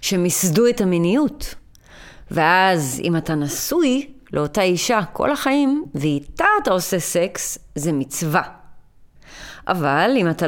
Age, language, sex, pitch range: 30-49, Hebrew, female, 165-230 Hz